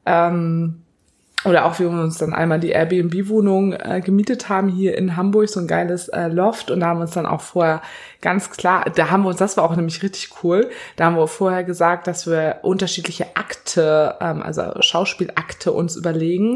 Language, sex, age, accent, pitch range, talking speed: German, female, 20-39, German, 165-190 Hz, 190 wpm